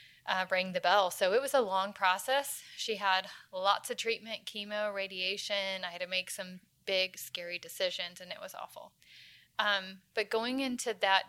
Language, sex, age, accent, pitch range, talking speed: English, female, 30-49, American, 185-225 Hz, 180 wpm